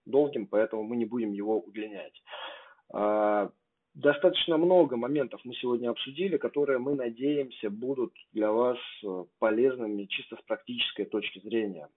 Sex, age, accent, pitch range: male, 20-39, native, 105-125 Hz